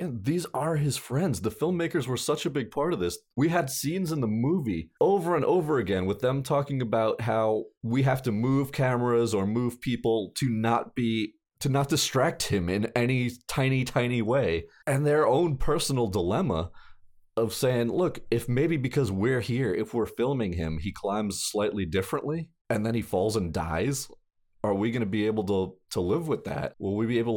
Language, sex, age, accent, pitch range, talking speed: English, male, 30-49, American, 95-130 Hz, 200 wpm